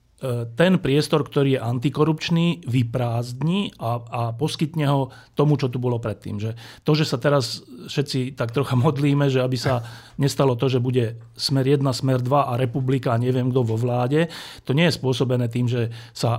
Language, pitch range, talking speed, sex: Slovak, 120-150 Hz, 180 wpm, male